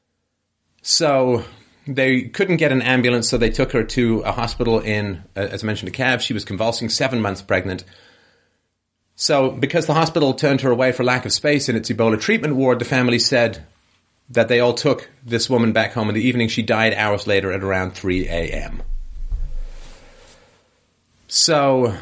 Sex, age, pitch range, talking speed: male, 30-49, 105-130 Hz, 175 wpm